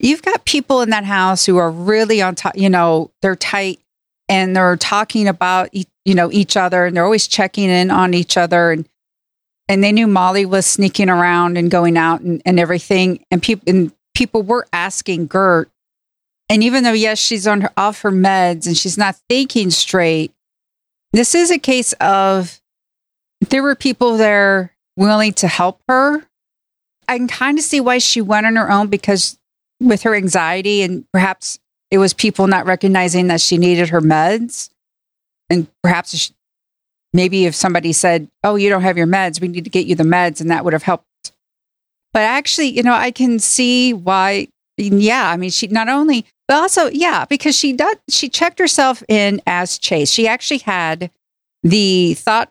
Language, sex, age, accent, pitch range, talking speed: English, female, 40-59, American, 180-225 Hz, 185 wpm